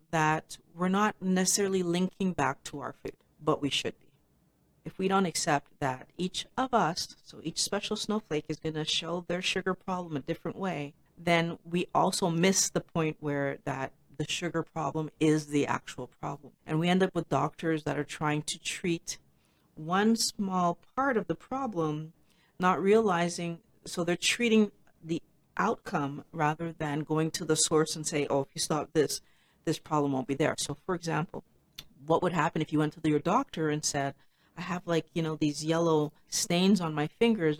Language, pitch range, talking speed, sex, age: English, 155-185 Hz, 185 wpm, female, 40-59